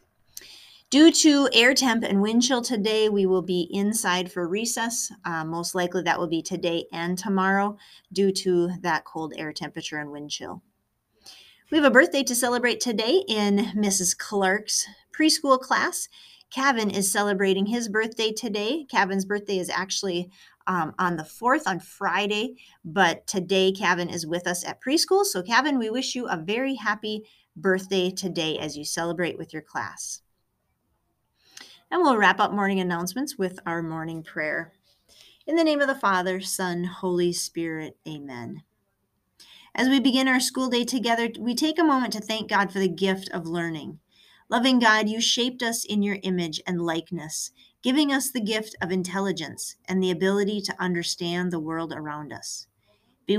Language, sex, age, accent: English, female, 30-49, American